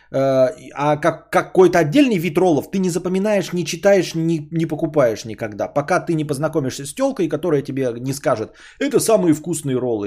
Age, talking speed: 20-39, 165 wpm